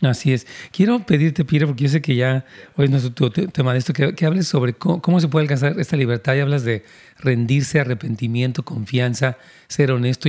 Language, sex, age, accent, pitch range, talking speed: Spanish, male, 40-59, Mexican, 125-150 Hz, 210 wpm